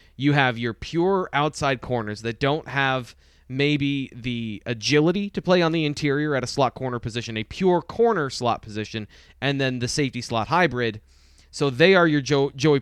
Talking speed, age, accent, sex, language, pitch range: 185 wpm, 20-39, American, male, English, 115-150 Hz